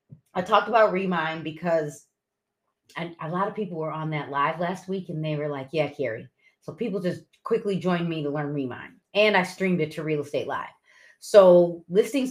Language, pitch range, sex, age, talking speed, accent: English, 155-200 Hz, female, 30-49, 200 wpm, American